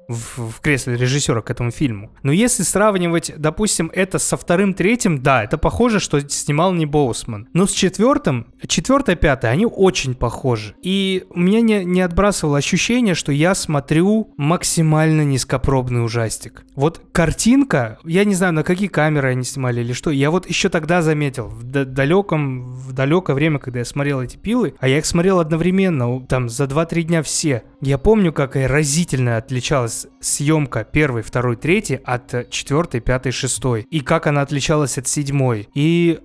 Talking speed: 165 wpm